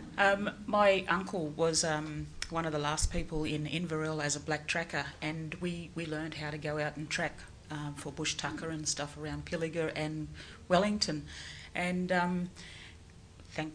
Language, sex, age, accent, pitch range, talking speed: English, female, 40-59, Australian, 150-180 Hz, 170 wpm